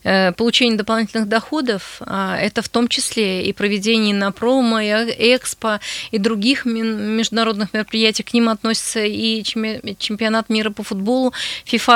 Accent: native